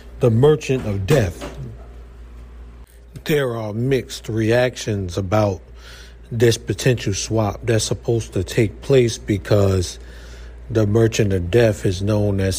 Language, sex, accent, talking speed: English, male, American, 120 wpm